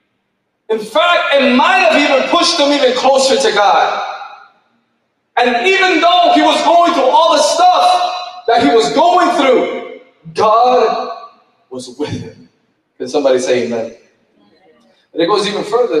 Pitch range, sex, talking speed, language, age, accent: 235-320 Hz, male, 150 wpm, English, 30-49, American